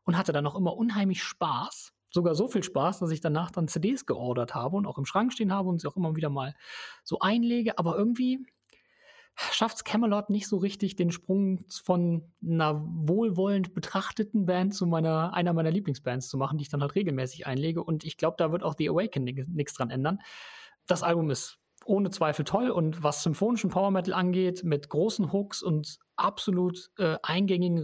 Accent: German